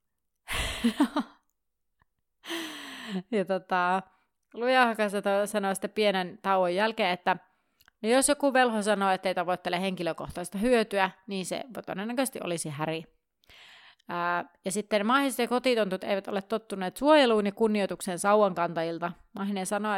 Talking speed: 110 wpm